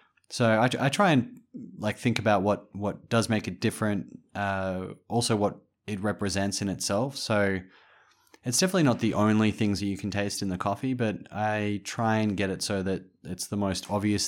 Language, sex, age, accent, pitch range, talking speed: English, male, 20-39, Australian, 95-115 Hz, 200 wpm